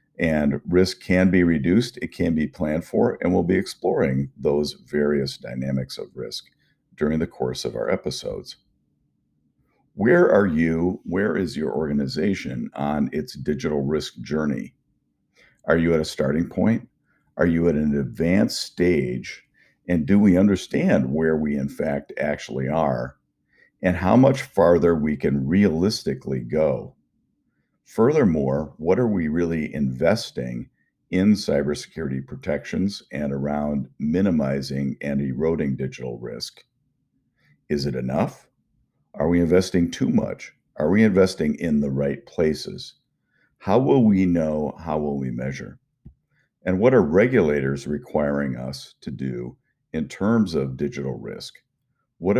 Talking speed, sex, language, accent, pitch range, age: 135 wpm, male, English, American, 65-80 Hz, 50-69